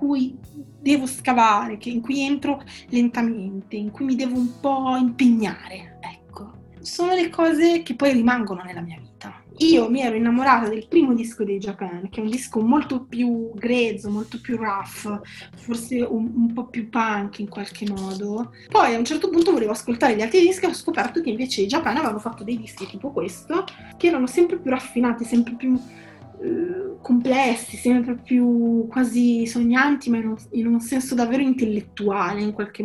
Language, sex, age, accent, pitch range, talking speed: Italian, female, 20-39, native, 215-285 Hz, 180 wpm